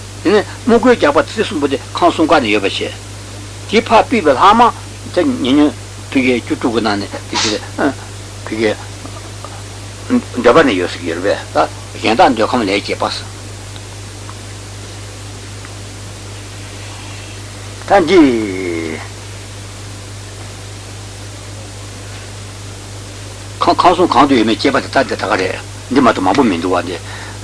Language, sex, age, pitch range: Italian, male, 60-79, 100-105 Hz